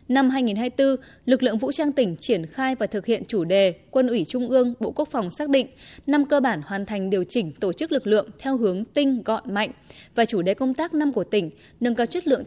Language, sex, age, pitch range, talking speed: Vietnamese, female, 20-39, 205-270 Hz, 245 wpm